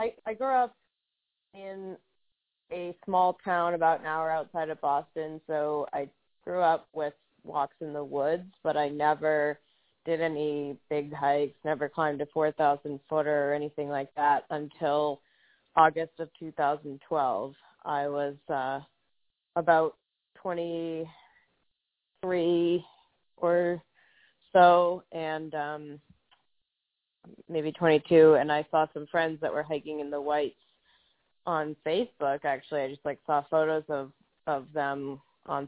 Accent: American